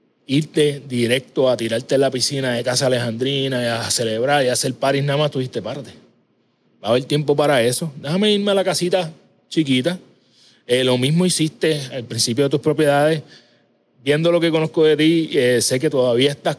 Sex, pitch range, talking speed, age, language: male, 125-155 Hz, 190 wpm, 30-49, Spanish